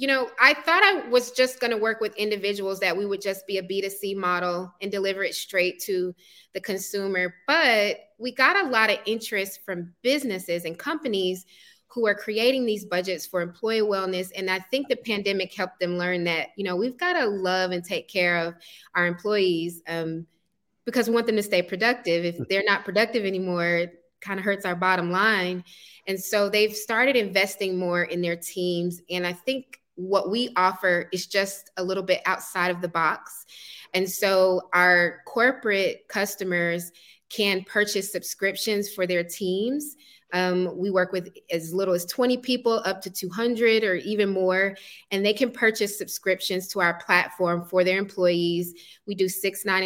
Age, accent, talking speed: 20-39, American, 185 wpm